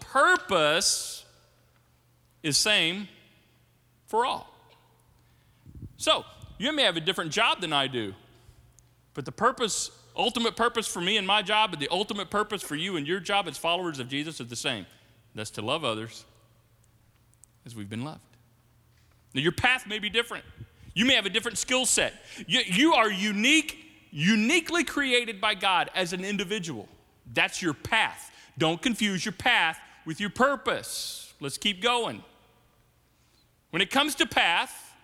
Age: 40-59